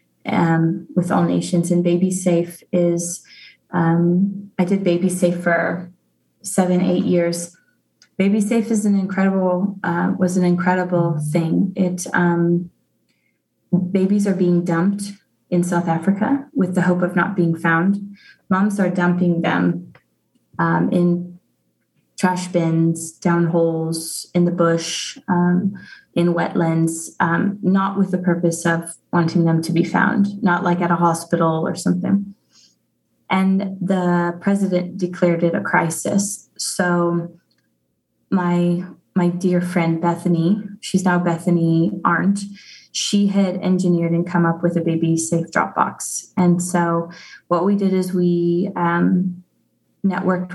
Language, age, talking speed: English, 20-39, 135 wpm